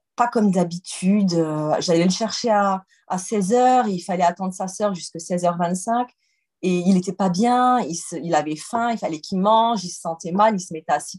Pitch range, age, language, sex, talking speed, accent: 175-240 Hz, 30-49, French, female, 210 wpm, French